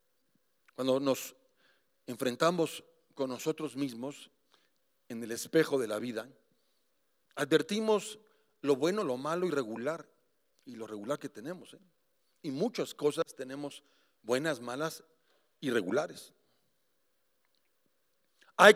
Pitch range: 150-225 Hz